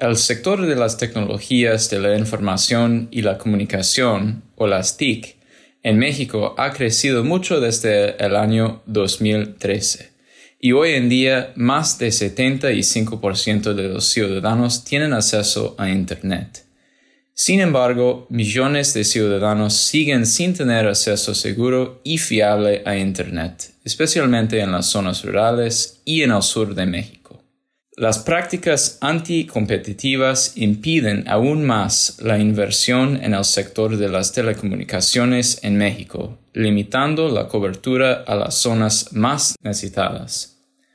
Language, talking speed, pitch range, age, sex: English, 125 wpm, 105-130 Hz, 20-39, male